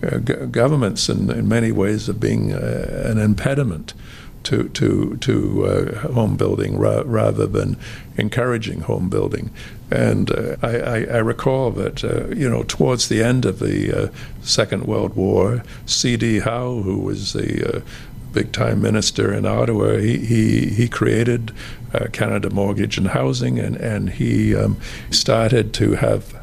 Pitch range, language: 105-120 Hz, English